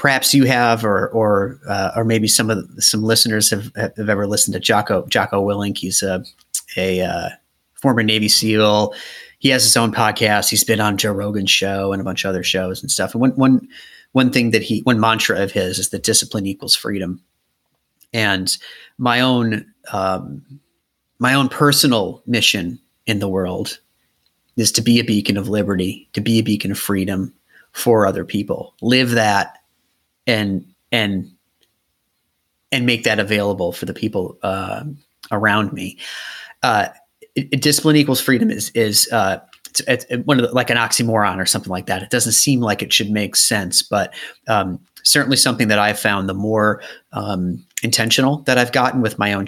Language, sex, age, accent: English, male, 30-49, American